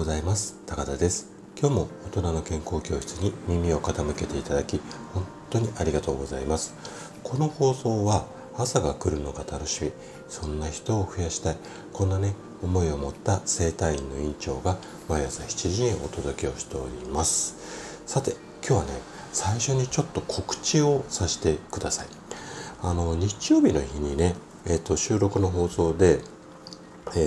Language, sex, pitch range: Japanese, male, 75-100 Hz